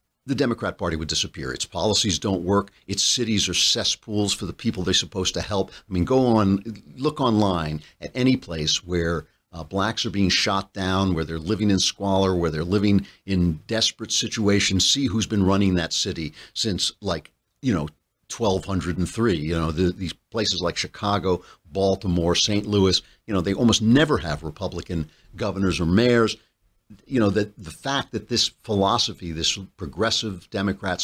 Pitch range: 90-110 Hz